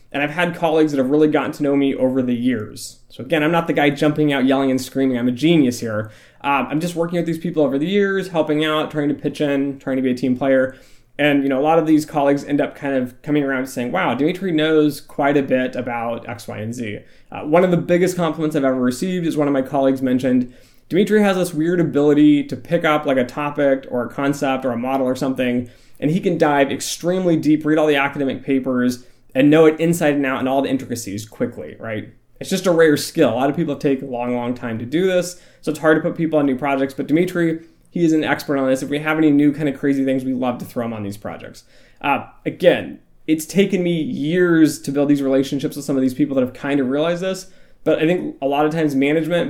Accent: American